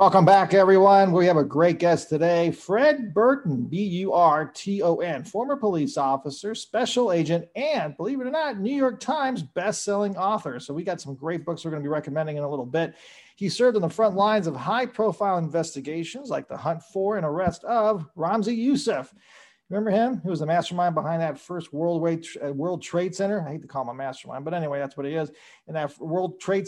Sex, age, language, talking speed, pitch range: male, 40-59, English, 200 wpm, 150-195 Hz